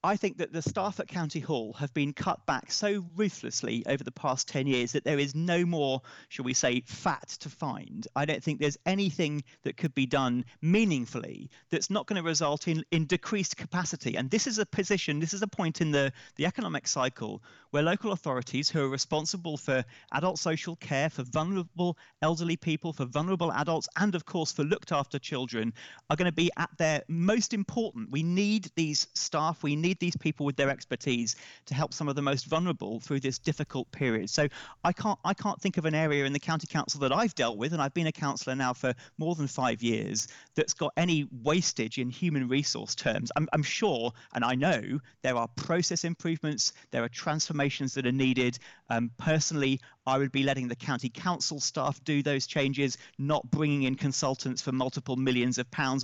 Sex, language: male, English